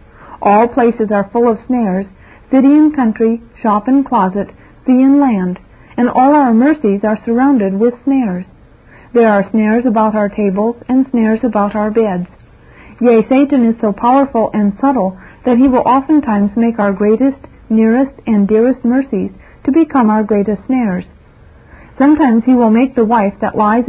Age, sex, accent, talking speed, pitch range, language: 40-59, female, American, 165 wpm, 210-255 Hz, English